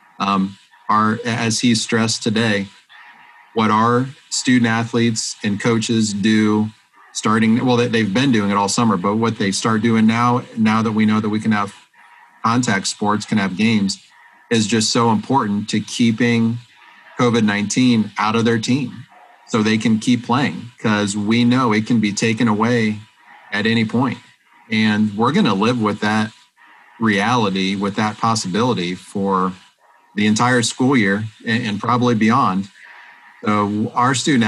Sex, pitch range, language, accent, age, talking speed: male, 105-120 Hz, English, American, 30-49, 155 wpm